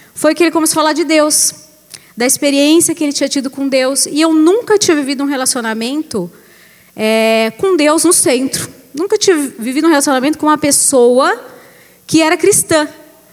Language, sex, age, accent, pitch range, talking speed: Portuguese, female, 20-39, Brazilian, 245-315 Hz, 170 wpm